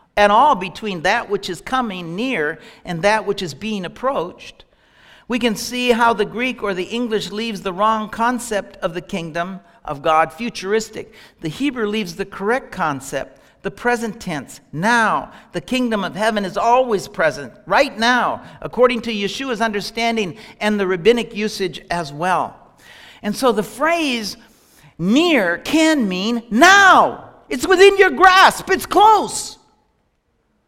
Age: 60-79